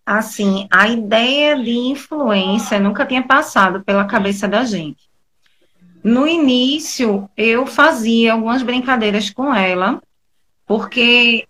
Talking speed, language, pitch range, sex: 110 wpm, Portuguese, 195-250 Hz, female